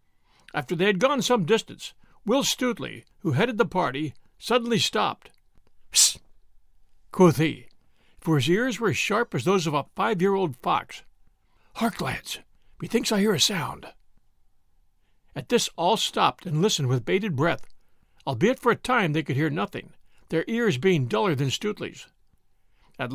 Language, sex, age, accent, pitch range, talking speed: English, male, 60-79, American, 145-220 Hz, 160 wpm